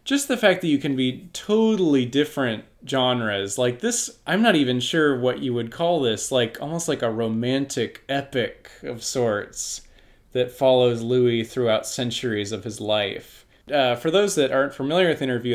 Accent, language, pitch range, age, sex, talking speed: American, English, 120-150 Hz, 20-39, male, 175 wpm